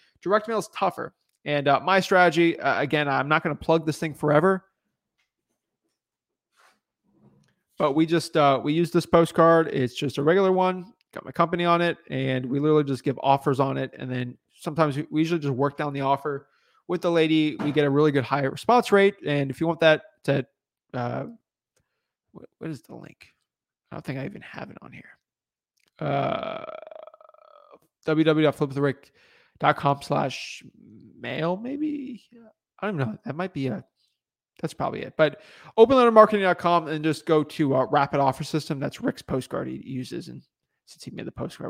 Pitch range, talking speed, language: 140-185 Hz, 180 wpm, English